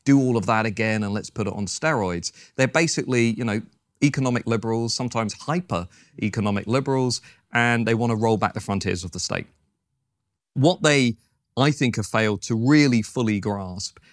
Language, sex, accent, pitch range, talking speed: English, male, British, 100-120 Hz, 175 wpm